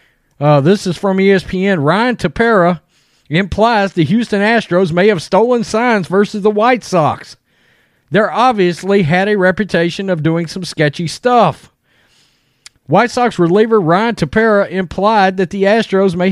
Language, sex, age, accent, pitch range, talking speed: English, male, 40-59, American, 170-215 Hz, 145 wpm